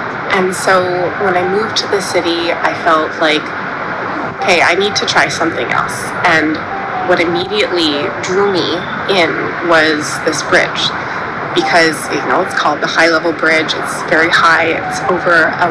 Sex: female